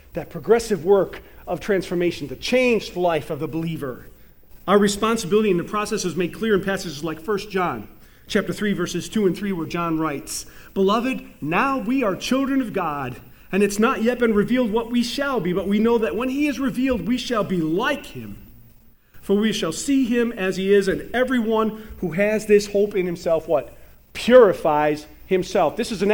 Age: 40-59